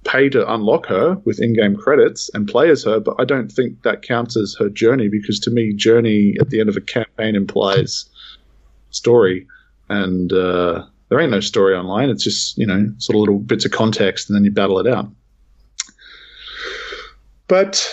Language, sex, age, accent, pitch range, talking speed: English, male, 20-39, Australian, 105-145 Hz, 185 wpm